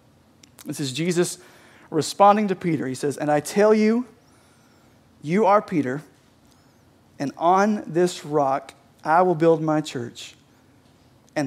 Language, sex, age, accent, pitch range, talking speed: English, male, 40-59, American, 155-195 Hz, 130 wpm